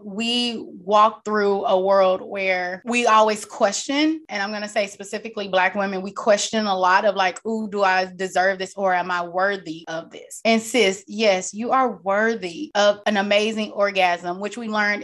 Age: 20-39